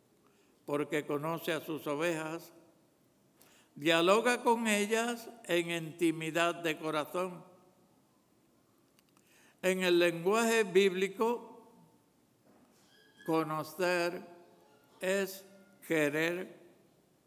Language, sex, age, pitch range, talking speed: English, male, 60-79, 165-210 Hz, 65 wpm